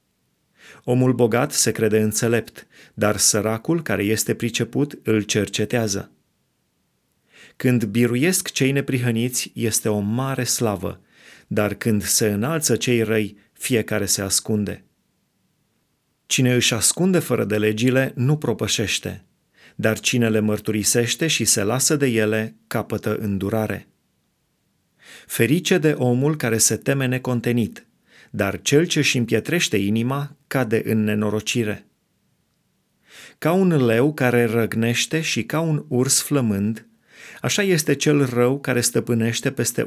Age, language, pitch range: 30-49, Romanian, 110-135 Hz